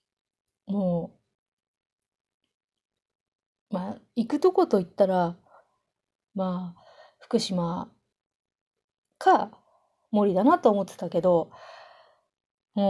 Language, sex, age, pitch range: Japanese, female, 30-49, 190-270 Hz